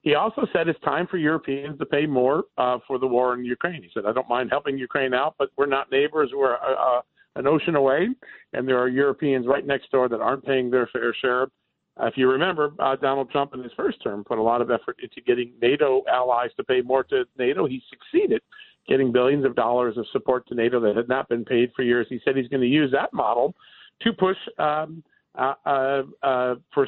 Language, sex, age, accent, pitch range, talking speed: English, male, 50-69, American, 125-155 Hz, 230 wpm